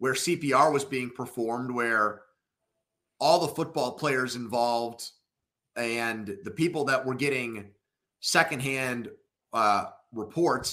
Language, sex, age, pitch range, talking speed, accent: English, male, 30-49, 115-135 Hz, 110 wpm, American